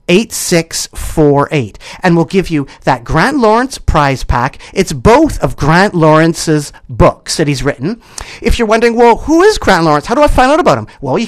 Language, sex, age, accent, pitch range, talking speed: English, male, 40-59, American, 155-225 Hz, 195 wpm